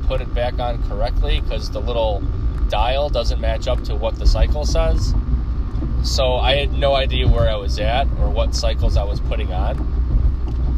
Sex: male